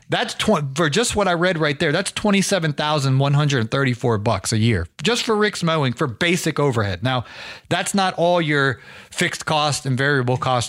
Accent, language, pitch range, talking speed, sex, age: American, English, 125-170 Hz, 175 wpm, male, 30-49